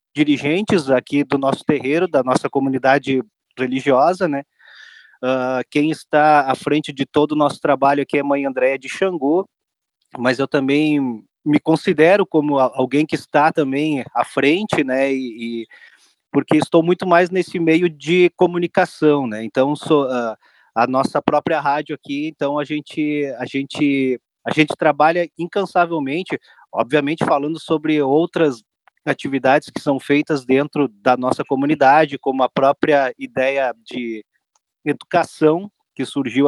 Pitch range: 135-165 Hz